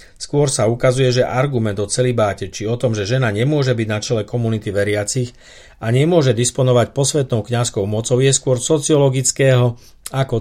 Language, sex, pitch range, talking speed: Slovak, male, 105-130 Hz, 160 wpm